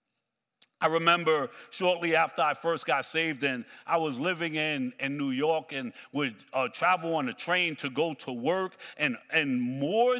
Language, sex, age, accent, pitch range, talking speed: English, male, 60-79, American, 155-215 Hz, 175 wpm